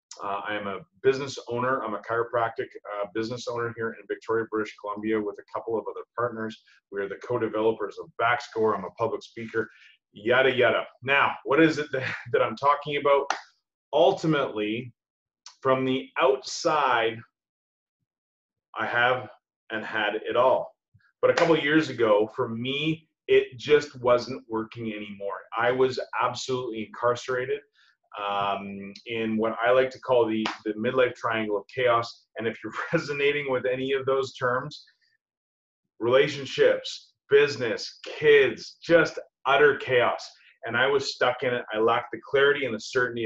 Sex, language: male, English